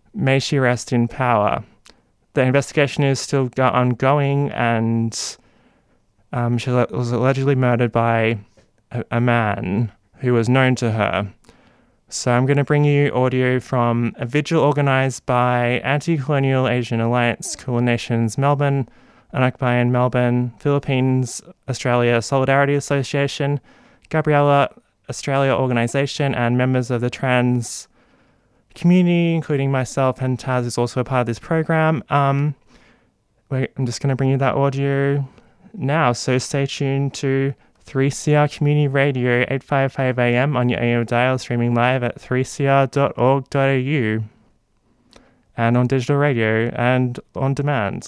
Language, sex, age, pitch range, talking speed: English, male, 20-39, 120-140 Hz, 130 wpm